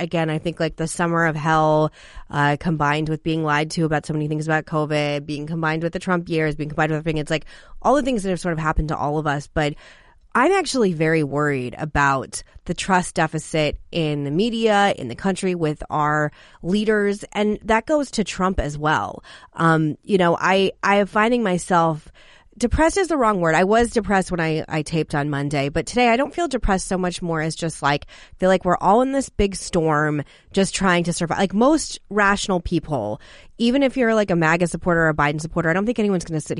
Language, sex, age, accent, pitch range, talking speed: English, female, 30-49, American, 150-195 Hz, 225 wpm